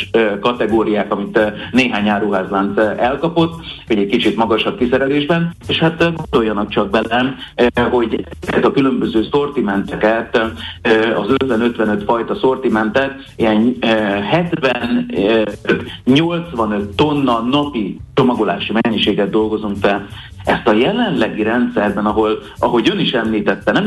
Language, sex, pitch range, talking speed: Hungarian, male, 105-125 Hz, 105 wpm